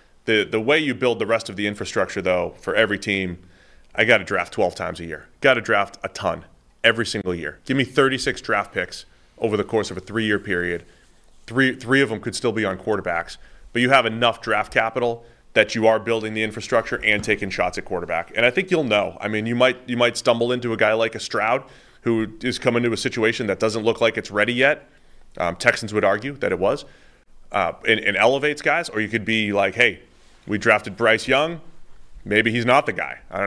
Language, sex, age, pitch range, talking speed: English, male, 30-49, 105-135 Hz, 235 wpm